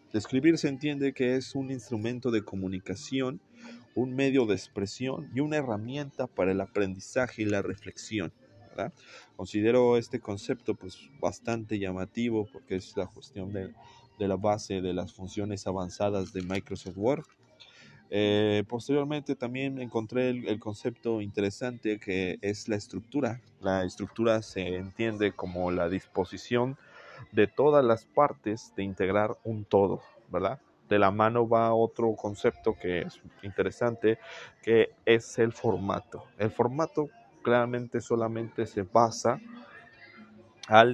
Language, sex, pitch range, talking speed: Spanish, male, 95-120 Hz, 135 wpm